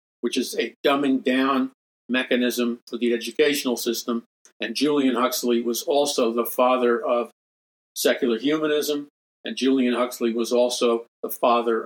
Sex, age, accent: male, 50-69, American